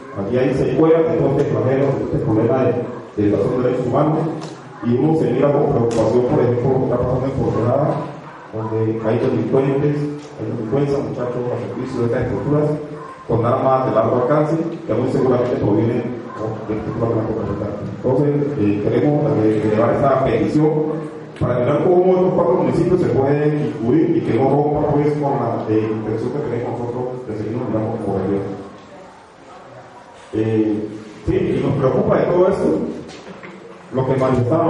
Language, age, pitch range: Spanish, 30-49, 115-150 Hz